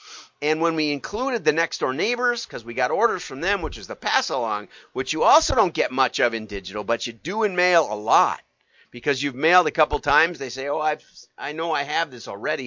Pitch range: 125-195 Hz